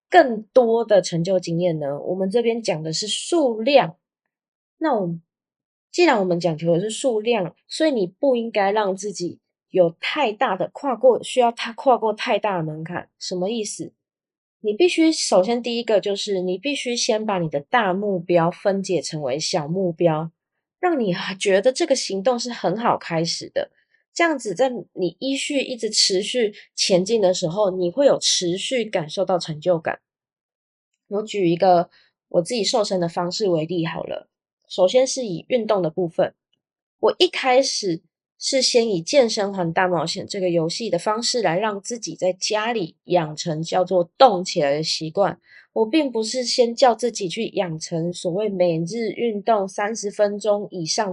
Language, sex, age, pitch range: Chinese, female, 20-39, 175-240 Hz